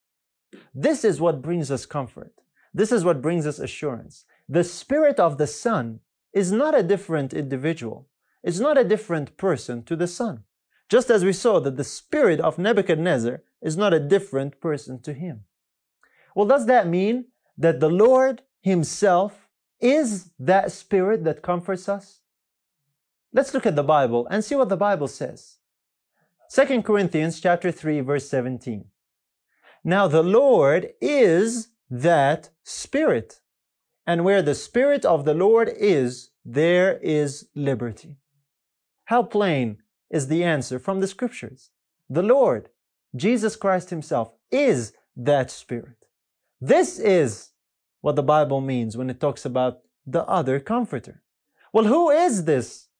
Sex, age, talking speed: male, 30-49, 145 wpm